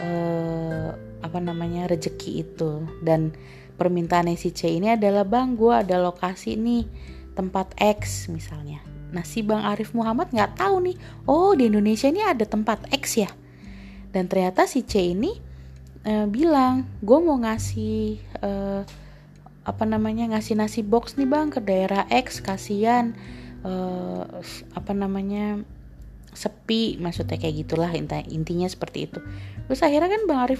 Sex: female